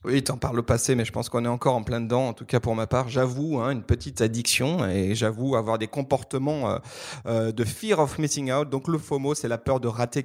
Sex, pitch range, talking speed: male, 115-140 Hz, 260 wpm